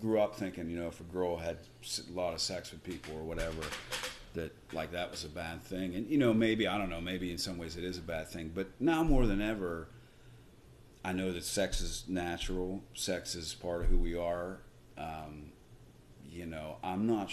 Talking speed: 220 wpm